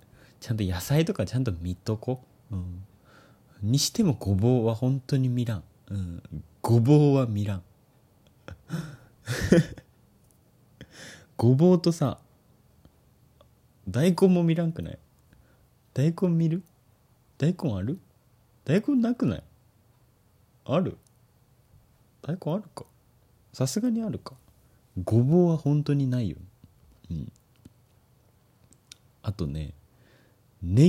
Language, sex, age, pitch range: Japanese, male, 30-49, 105-140 Hz